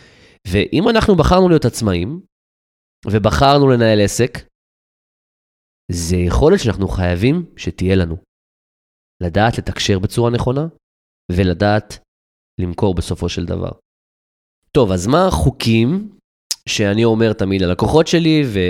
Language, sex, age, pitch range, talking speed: Hebrew, male, 20-39, 95-130 Hz, 110 wpm